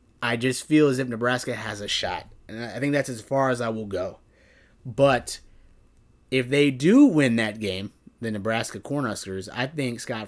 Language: English